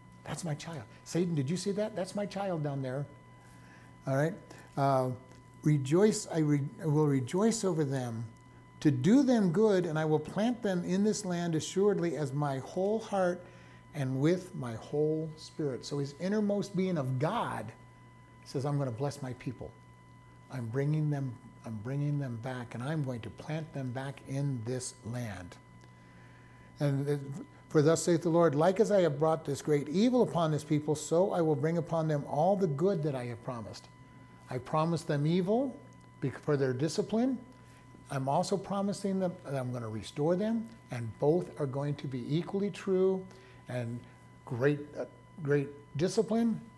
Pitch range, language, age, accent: 125-180 Hz, English, 60-79, American